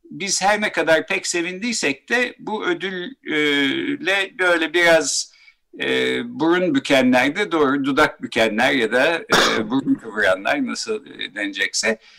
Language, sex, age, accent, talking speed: Turkish, male, 60-79, native, 110 wpm